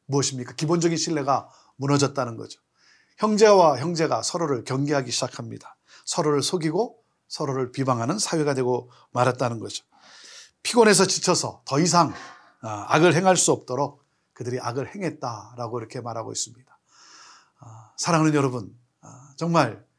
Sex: male